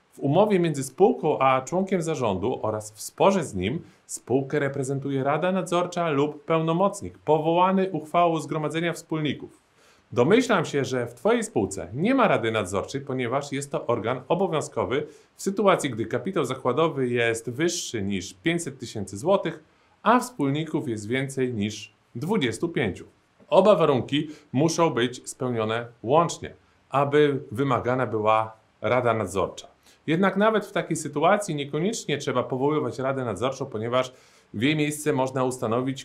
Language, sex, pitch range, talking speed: Polish, male, 125-165 Hz, 135 wpm